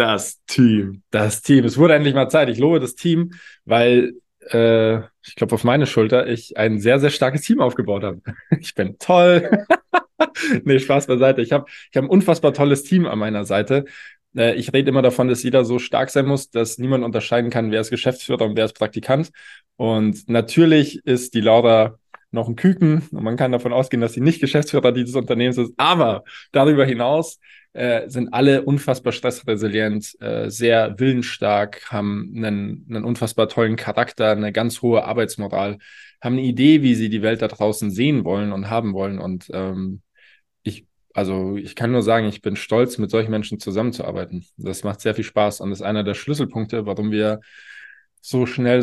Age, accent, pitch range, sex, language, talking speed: 20-39, German, 105-135 Hz, male, German, 185 wpm